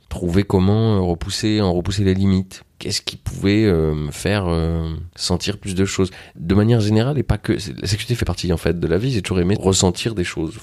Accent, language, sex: French, French, male